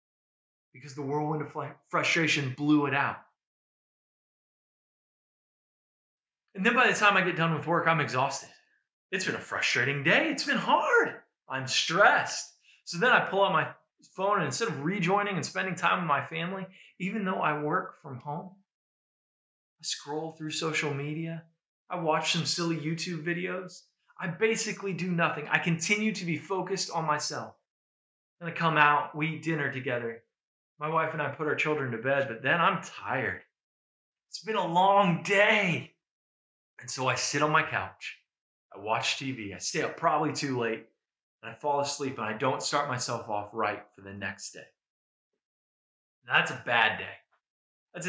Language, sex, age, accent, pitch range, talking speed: English, male, 20-39, American, 130-180 Hz, 170 wpm